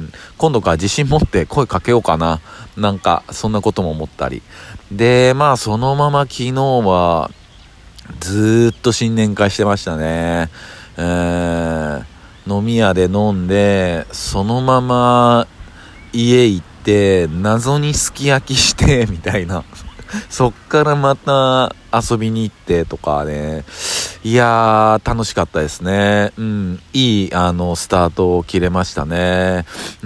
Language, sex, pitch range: Japanese, male, 85-115 Hz